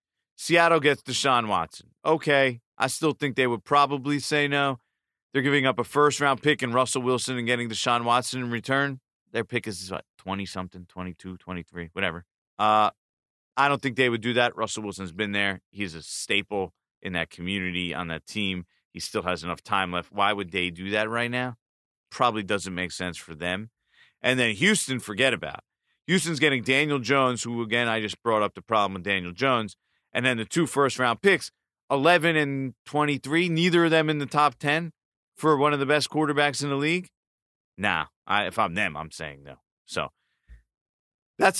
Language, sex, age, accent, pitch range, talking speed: English, male, 30-49, American, 100-145 Hz, 190 wpm